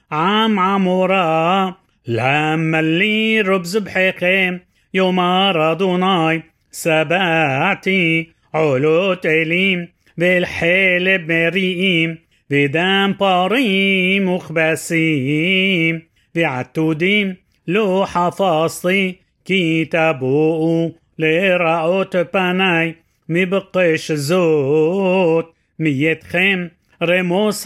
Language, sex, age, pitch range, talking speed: Hebrew, male, 30-49, 160-190 Hz, 60 wpm